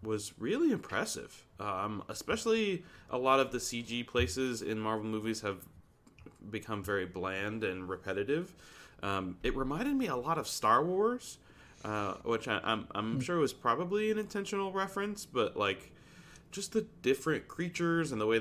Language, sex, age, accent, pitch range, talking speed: English, male, 20-39, American, 105-135 Hz, 165 wpm